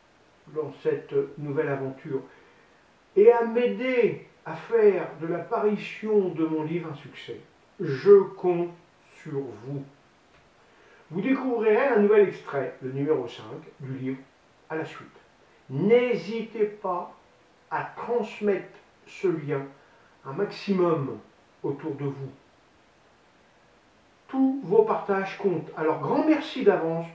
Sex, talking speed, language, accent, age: male, 115 wpm, French, French, 50-69